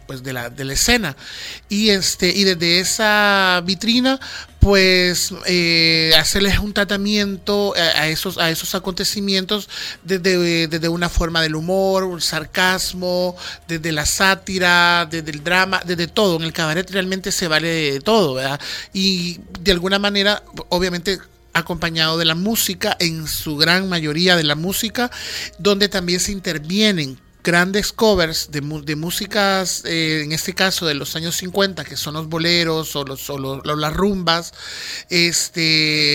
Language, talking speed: Spanish, 140 wpm